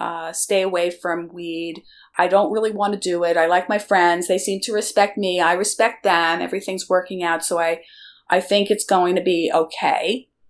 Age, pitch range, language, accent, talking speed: 40-59, 170-210 Hz, English, American, 205 wpm